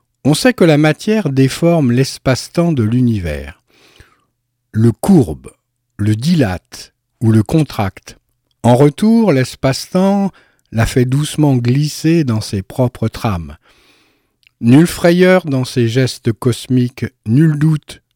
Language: French